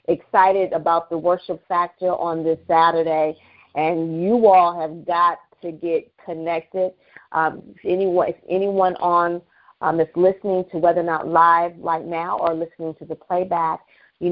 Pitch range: 170-210 Hz